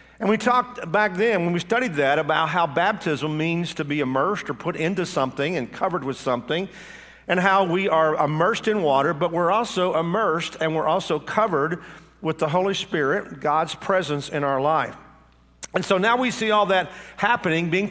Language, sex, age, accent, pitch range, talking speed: English, male, 50-69, American, 150-195 Hz, 190 wpm